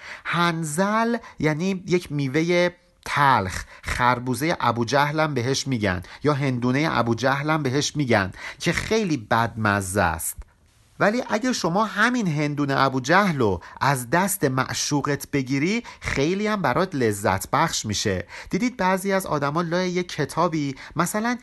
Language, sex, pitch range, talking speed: Persian, male, 125-175 Hz, 120 wpm